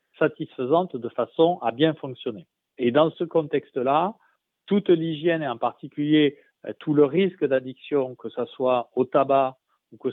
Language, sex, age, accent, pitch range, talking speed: French, male, 40-59, French, 120-150 Hz, 155 wpm